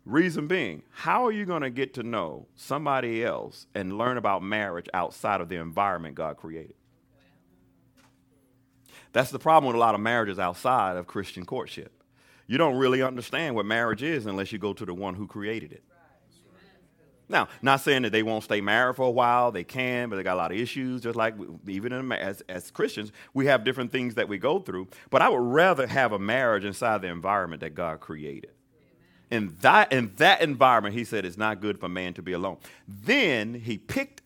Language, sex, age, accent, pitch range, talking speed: English, male, 40-59, American, 95-130 Hz, 200 wpm